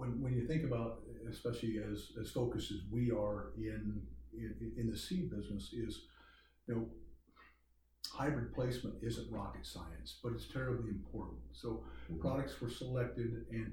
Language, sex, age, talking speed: English, male, 50-69, 155 wpm